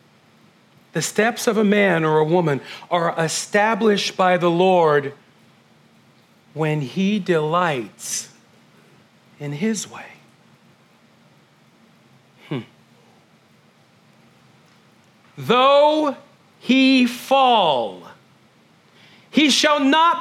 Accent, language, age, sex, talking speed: American, English, 40-59, male, 75 wpm